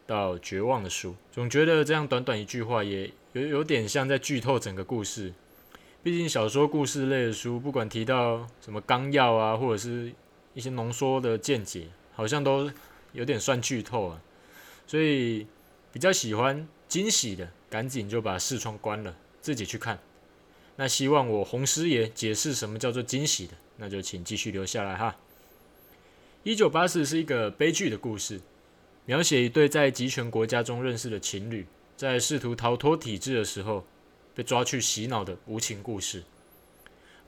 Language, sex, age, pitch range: Chinese, male, 20-39, 105-145 Hz